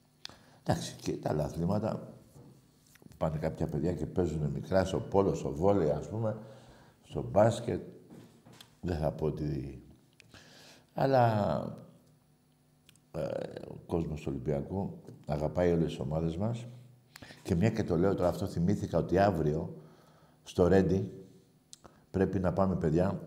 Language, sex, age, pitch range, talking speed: Greek, male, 60-79, 80-120 Hz, 130 wpm